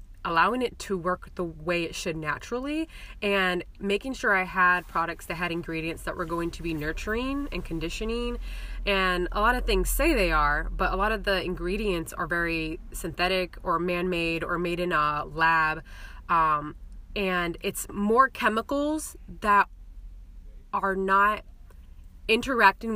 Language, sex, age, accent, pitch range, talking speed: English, female, 20-39, American, 165-195 Hz, 155 wpm